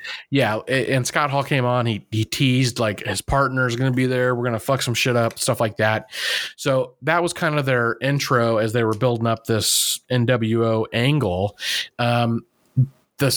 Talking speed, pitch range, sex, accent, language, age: 195 wpm, 115-145 Hz, male, American, English, 30-49